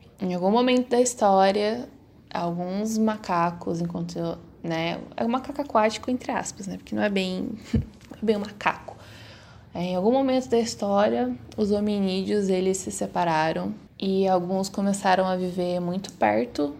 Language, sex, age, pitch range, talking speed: Portuguese, female, 10-29, 175-230 Hz, 145 wpm